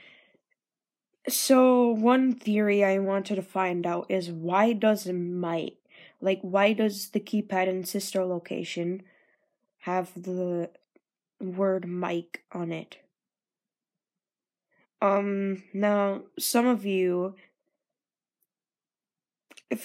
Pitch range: 190-245 Hz